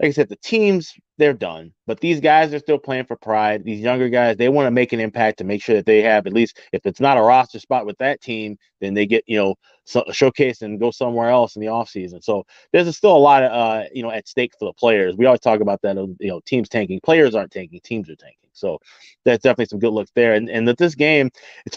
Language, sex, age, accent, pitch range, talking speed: English, male, 30-49, American, 105-135 Hz, 260 wpm